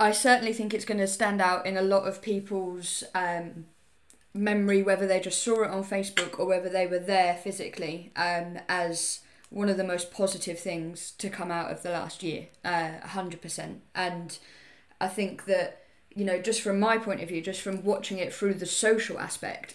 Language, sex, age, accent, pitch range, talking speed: English, female, 10-29, British, 180-210 Hz, 200 wpm